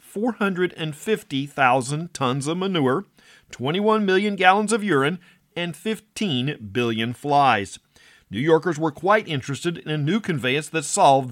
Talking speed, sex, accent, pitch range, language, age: 125 wpm, male, American, 140-195 Hz, English, 50-69